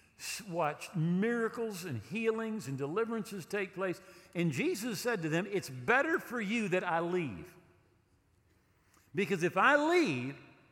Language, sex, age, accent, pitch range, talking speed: English, male, 50-69, American, 145-210 Hz, 135 wpm